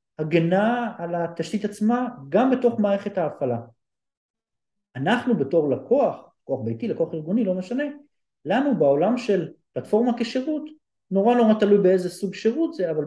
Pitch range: 145-205 Hz